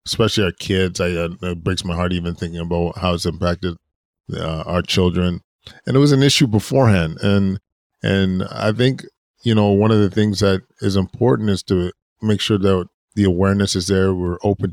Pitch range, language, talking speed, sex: 90-105 Hz, English, 195 wpm, male